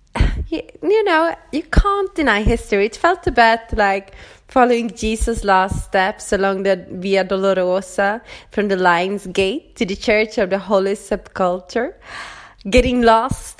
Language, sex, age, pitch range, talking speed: English, female, 20-39, 195-245 Hz, 135 wpm